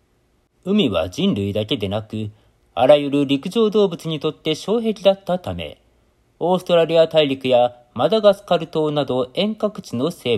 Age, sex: 40-59, male